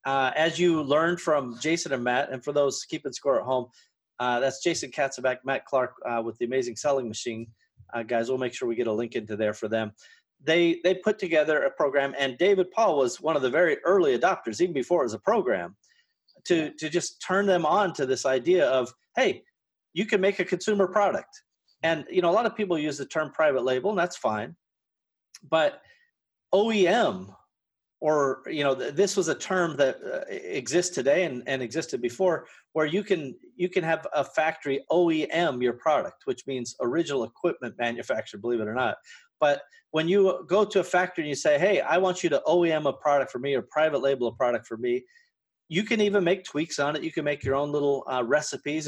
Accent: American